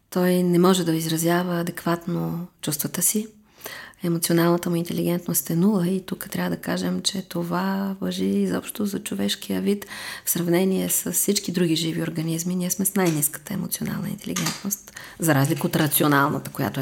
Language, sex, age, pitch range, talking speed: Bulgarian, female, 30-49, 160-190 Hz, 155 wpm